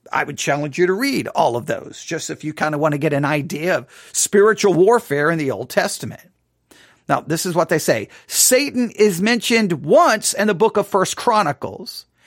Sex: male